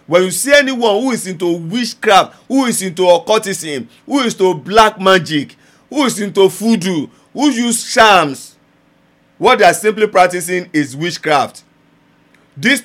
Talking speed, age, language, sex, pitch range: 150 wpm, 50-69, English, male, 165-230 Hz